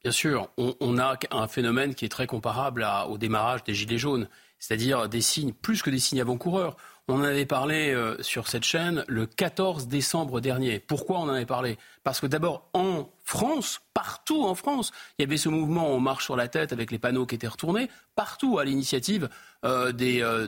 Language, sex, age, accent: French, male, 30-49, French